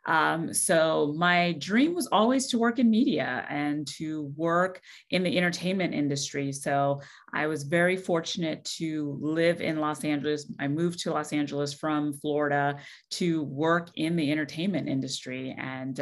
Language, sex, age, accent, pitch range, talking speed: English, female, 30-49, American, 150-185 Hz, 155 wpm